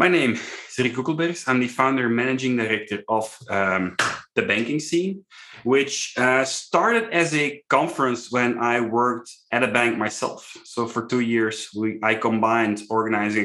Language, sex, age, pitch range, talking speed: English, male, 30-49, 105-130 Hz, 160 wpm